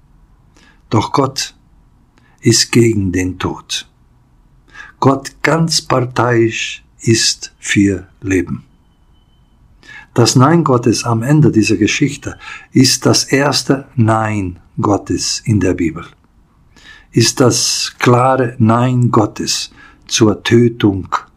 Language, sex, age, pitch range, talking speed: Portuguese, male, 50-69, 100-135 Hz, 95 wpm